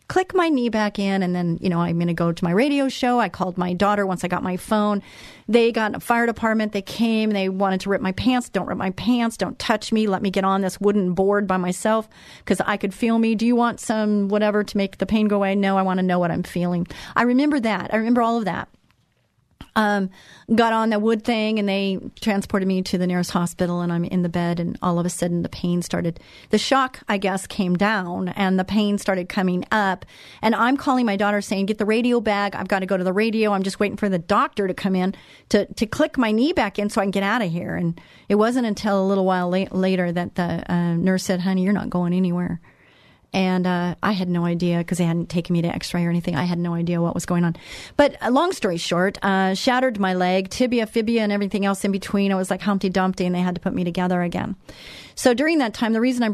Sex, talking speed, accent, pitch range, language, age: female, 260 wpm, American, 180-220 Hz, English, 40-59